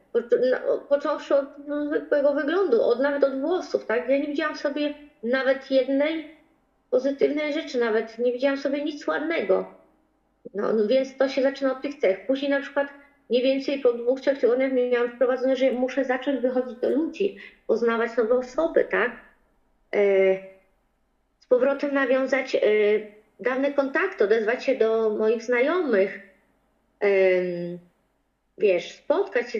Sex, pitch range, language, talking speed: female, 250-310 Hz, Polish, 130 wpm